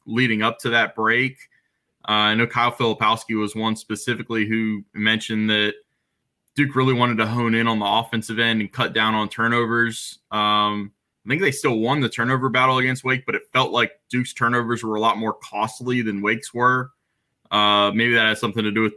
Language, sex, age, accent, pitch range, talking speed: English, male, 20-39, American, 110-130 Hz, 200 wpm